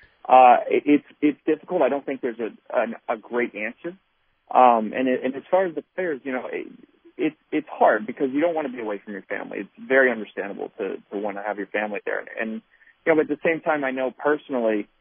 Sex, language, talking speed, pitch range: male, English, 245 wpm, 105-135 Hz